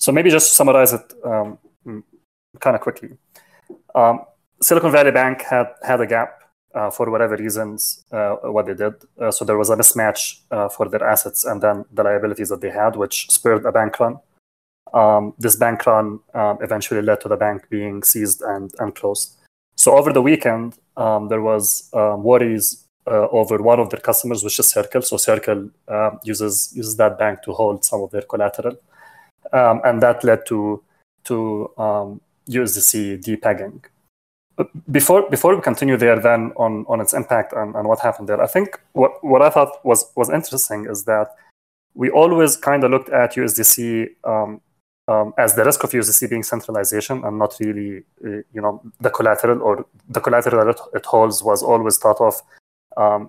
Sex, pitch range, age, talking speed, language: male, 105-120 Hz, 20-39, 185 wpm, English